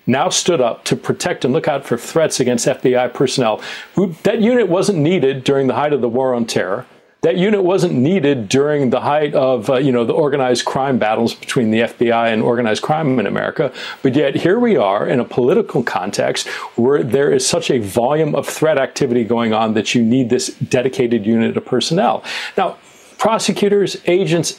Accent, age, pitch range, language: American, 40-59, 125-185 Hz, English